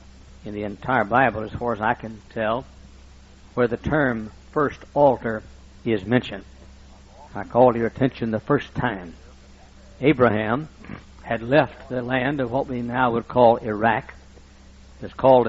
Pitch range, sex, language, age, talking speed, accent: 105-130 Hz, male, English, 60-79, 145 wpm, American